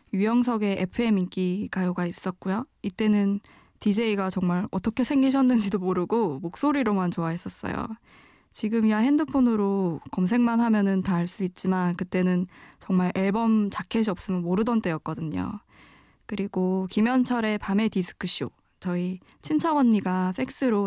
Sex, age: female, 20-39